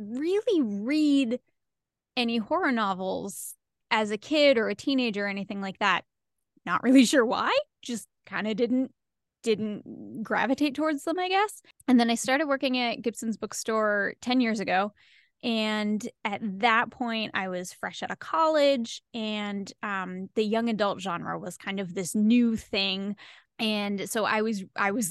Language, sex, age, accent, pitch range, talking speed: English, female, 10-29, American, 200-250 Hz, 165 wpm